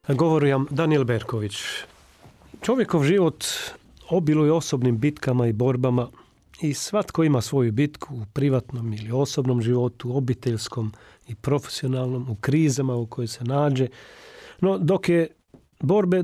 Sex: male